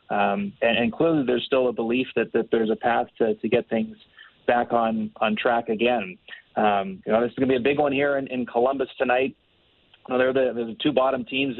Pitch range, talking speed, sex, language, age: 110-130 Hz, 240 wpm, male, English, 30-49